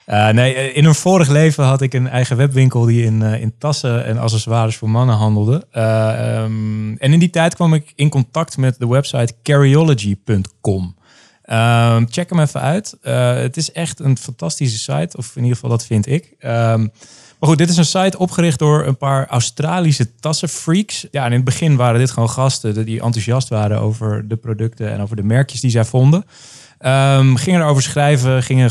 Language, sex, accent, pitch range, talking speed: Dutch, male, Dutch, 110-145 Hz, 195 wpm